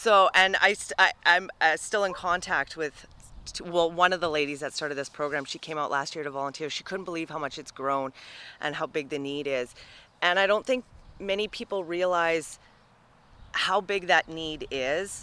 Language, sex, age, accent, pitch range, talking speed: English, female, 30-49, American, 145-180 Hz, 215 wpm